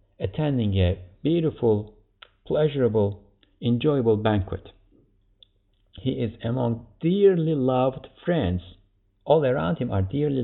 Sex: male